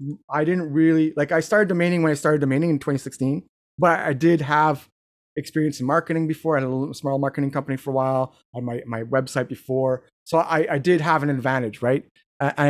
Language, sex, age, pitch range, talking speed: English, male, 30-49, 135-165 Hz, 210 wpm